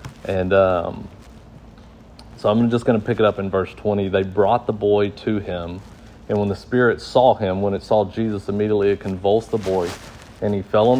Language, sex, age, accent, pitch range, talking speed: English, male, 40-59, American, 100-120 Hz, 205 wpm